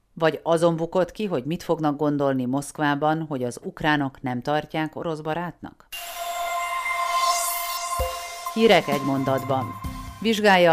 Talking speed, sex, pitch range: 110 wpm, female, 125-175 Hz